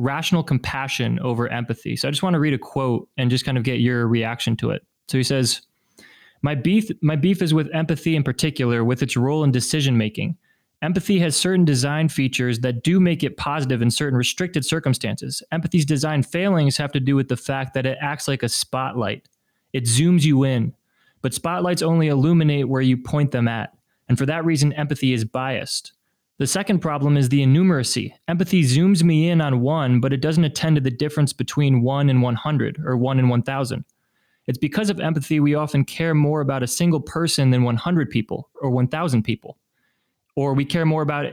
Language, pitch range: English, 130-160 Hz